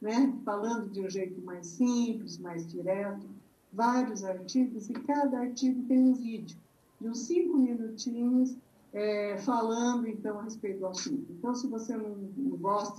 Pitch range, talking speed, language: 195-250 Hz, 155 wpm, Portuguese